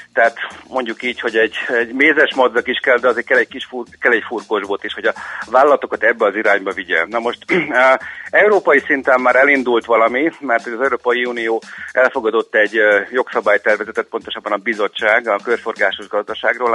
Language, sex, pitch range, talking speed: Hungarian, male, 110-140 Hz, 170 wpm